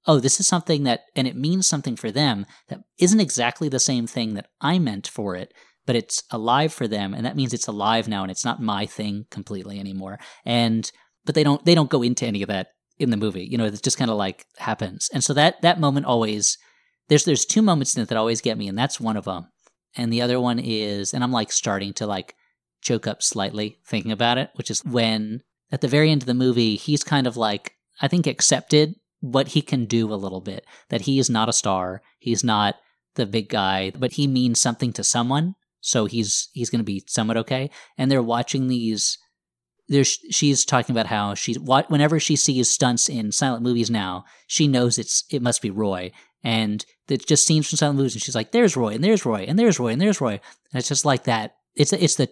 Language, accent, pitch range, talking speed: English, American, 110-145 Hz, 235 wpm